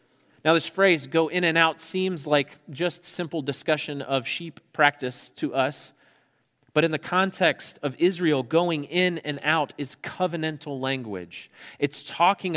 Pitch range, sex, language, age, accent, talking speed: 120-155 Hz, male, English, 30-49, American, 155 wpm